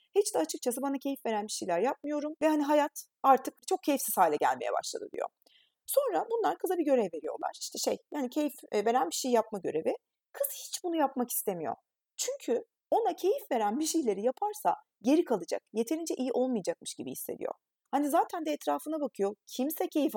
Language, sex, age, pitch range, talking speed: Turkish, female, 30-49, 245-365 Hz, 180 wpm